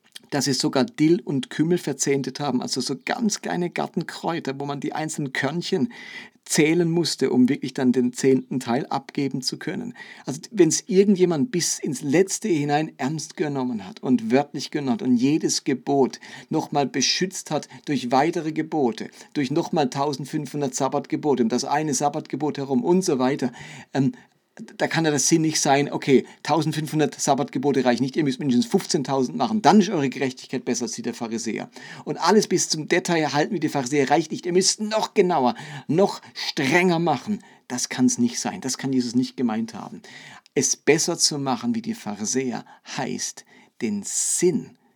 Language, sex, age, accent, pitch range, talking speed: German, male, 50-69, German, 130-180 Hz, 175 wpm